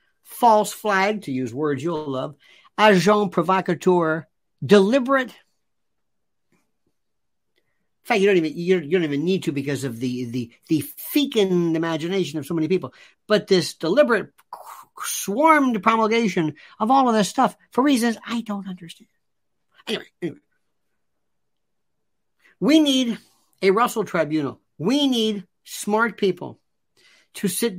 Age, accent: 50-69, American